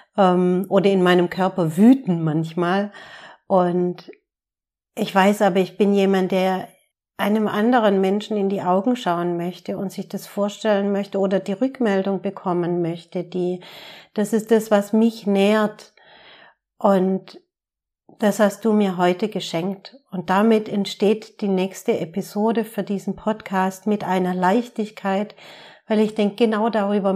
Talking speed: 140 wpm